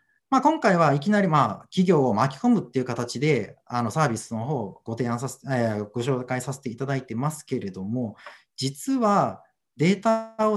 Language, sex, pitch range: Japanese, male, 130-205 Hz